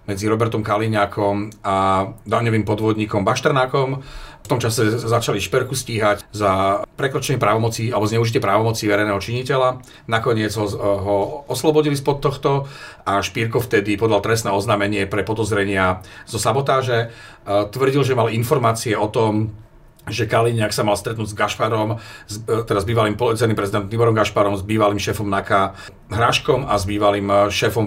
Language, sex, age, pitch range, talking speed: Slovak, male, 40-59, 100-120 Hz, 140 wpm